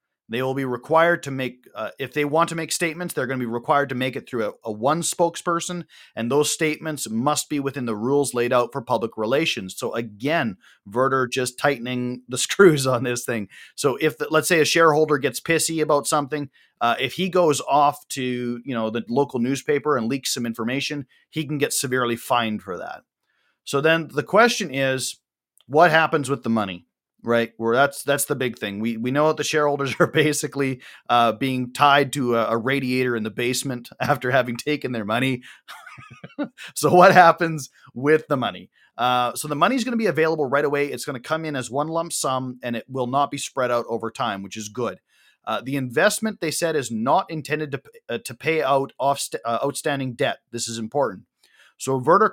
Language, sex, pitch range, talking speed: English, male, 125-155 Hz, 210 wpm